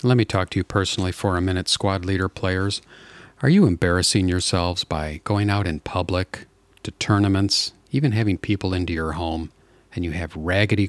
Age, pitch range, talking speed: 40-59, 90-115 Hz, 180 wpm